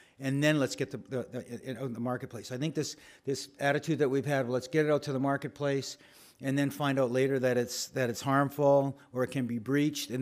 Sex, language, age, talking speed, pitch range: male, English, 50-69, 240 wpm, 125-150 Hz